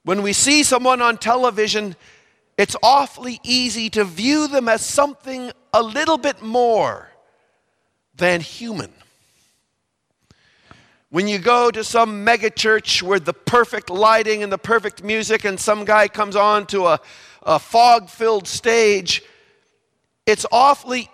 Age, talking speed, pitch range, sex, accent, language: 50-69, 135 wpm, 180-235 Hz, male, American, English